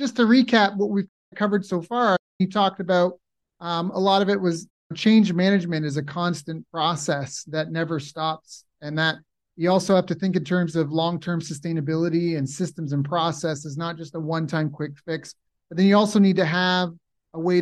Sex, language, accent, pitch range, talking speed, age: male, English, American, 160-190 Hz, 200 wpm, 30-49